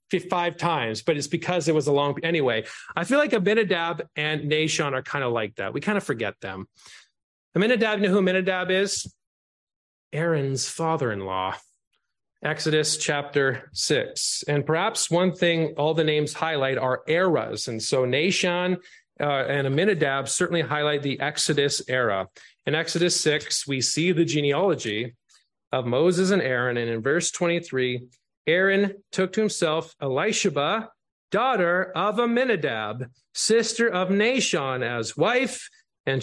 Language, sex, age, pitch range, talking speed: English, male, 30-49, 135-190 Hz, 145 wpm